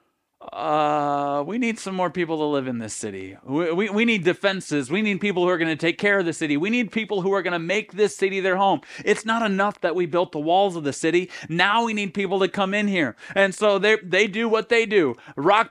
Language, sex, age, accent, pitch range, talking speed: English, male, 40-59, American, 145-205 Hz, 260 wpm